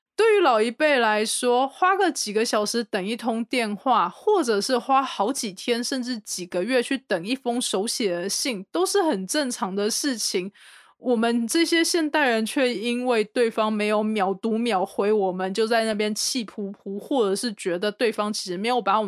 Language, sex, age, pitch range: Chinese, female, 20-39, 200-255 Hz